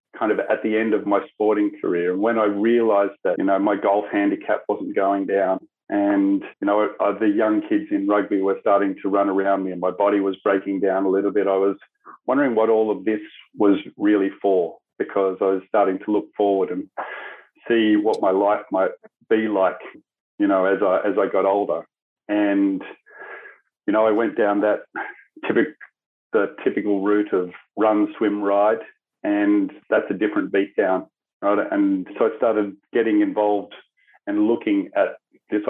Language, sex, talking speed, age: English, male, 185 wpm, 40-59